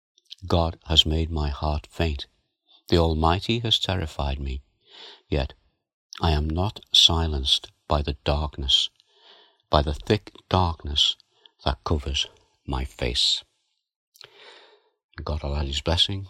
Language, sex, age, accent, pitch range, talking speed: English, male, 60-79, British, 75-85 Hz, 115 wpm